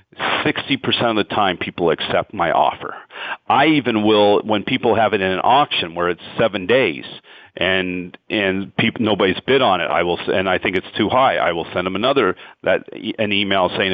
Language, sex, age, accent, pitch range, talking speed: English, male, 40-59, American, 95-110 Hz, 200 wpm